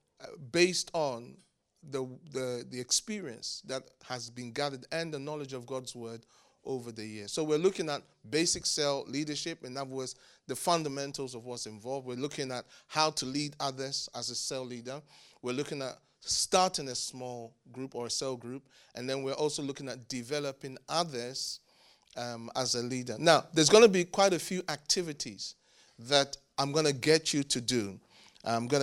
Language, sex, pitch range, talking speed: English, male, 125-150 Hz, 180 wpm